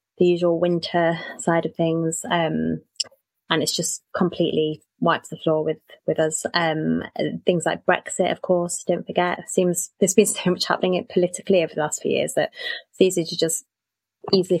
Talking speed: 175 wpm